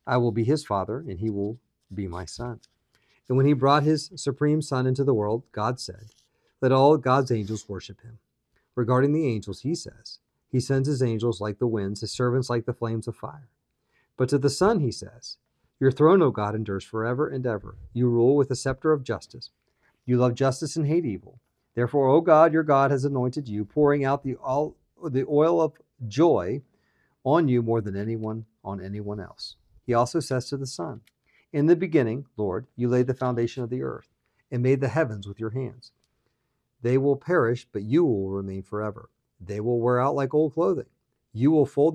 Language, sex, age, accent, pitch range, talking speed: English, male, 50-69, American, 110-140 Hz, 200 wpm